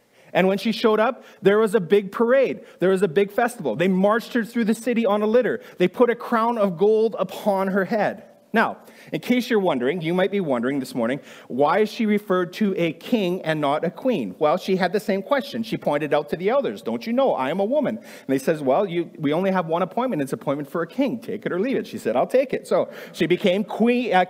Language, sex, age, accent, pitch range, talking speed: English, male, 30-49, American, 160-225 Hz, 255 wpm